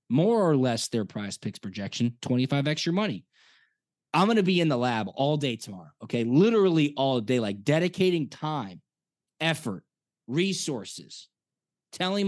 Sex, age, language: male, 20-39, English